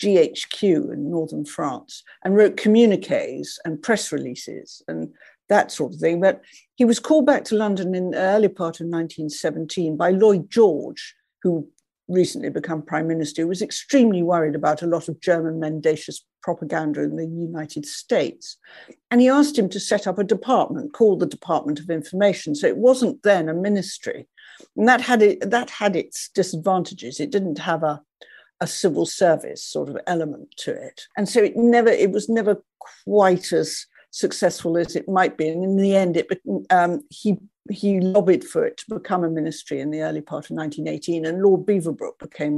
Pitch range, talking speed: 165-235 Hz, 180 wpm